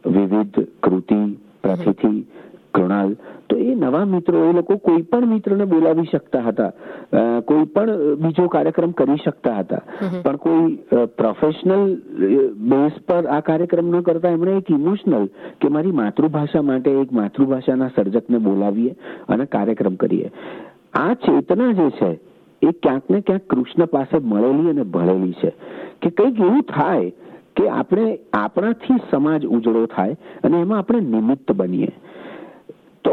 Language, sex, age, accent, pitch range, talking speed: Gujarati, male, 50-69, native, 120-185 Hz, 120 wpm